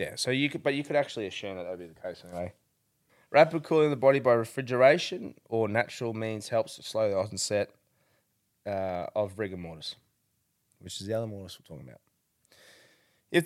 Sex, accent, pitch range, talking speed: male, Australian, 105-140 Hz, 195 wpm